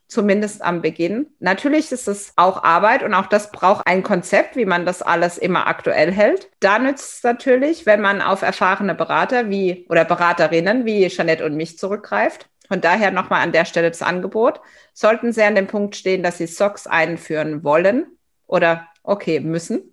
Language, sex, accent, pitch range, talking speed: German, female, German, 175-225 Hz, 180 wpm